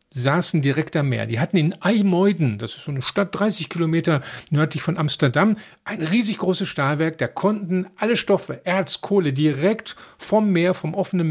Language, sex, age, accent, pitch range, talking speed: German, male, 50-69, German, 140-195 Hz, 175 wpm